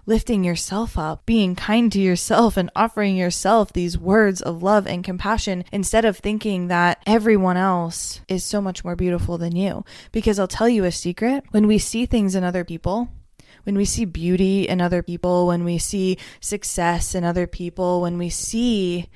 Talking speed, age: 185 wpm, 20-39